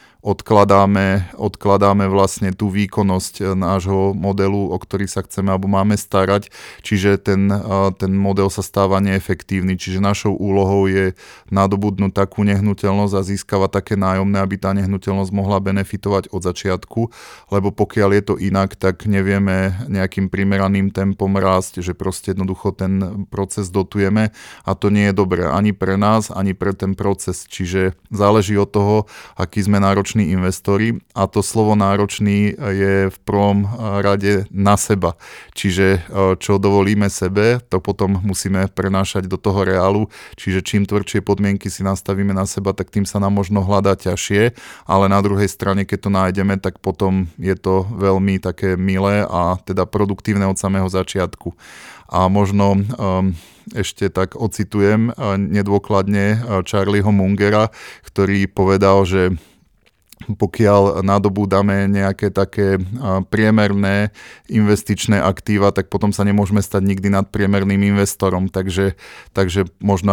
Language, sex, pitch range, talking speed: Slovak, male, 95-100 Hz, 140 wpm